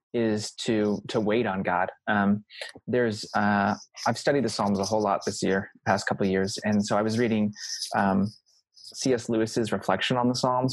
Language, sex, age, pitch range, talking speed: English, male, 20-39, 100-115 Hz, 185 wpm